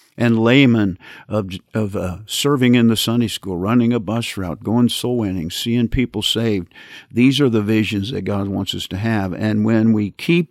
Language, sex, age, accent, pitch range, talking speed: English, male, 50-69, American, 100-115 Hz, 195 wpm